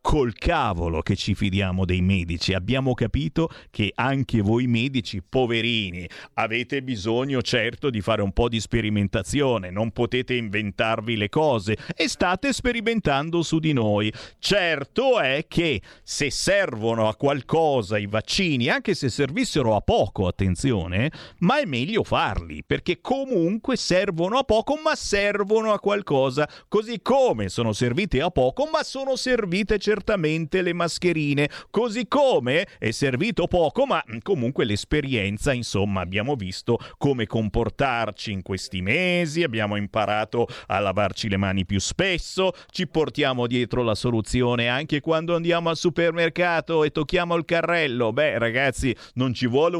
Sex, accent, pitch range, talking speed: male, native, 110-165 Hz, 140 wpm